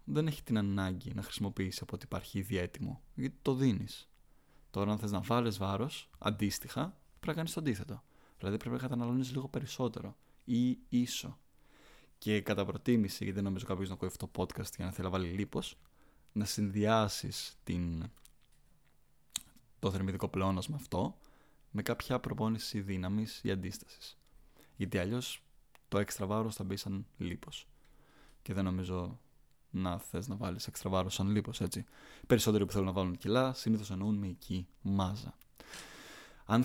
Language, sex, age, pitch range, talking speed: Greek, male, 20-39, 95-125 Hz, 155 wpm